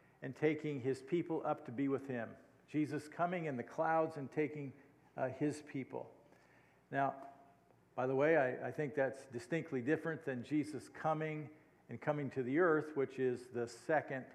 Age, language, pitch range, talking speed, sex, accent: 50-69, English, 130-155 Hz, 170 wpm, male, American